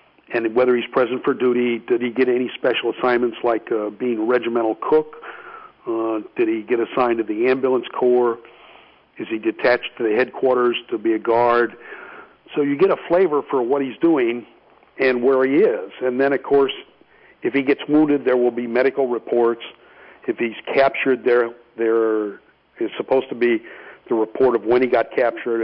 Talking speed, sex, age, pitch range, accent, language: 185 wpm, male, 50-69, 115-145 Hz, American, English